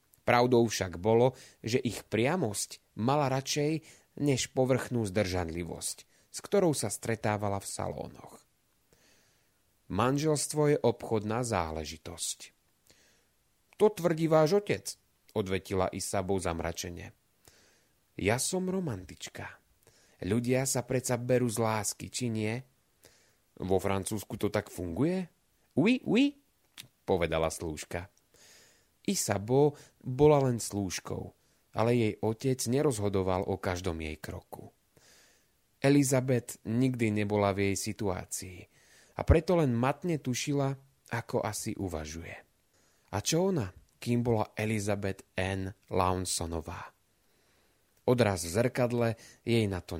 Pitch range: 95-130 Hz